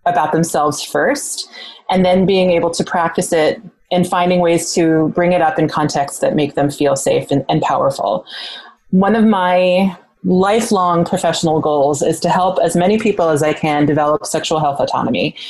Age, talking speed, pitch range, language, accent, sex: 30-49, 180 wpm, 155-185 Hz, English, American, female